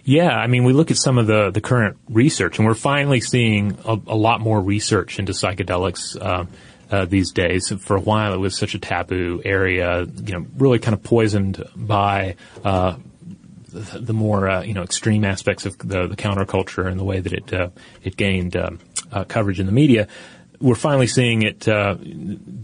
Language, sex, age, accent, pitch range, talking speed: English, male, 30-49, American, 100-120 Hz, 200 wpm